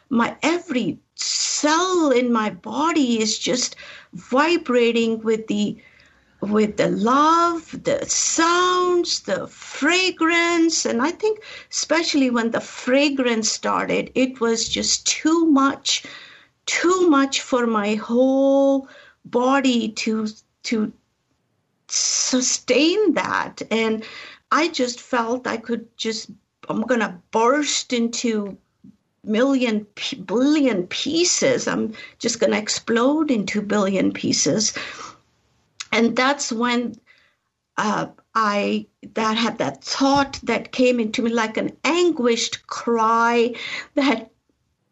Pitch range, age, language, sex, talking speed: 220-280 Hz, 50-69, English, female, 110 wpm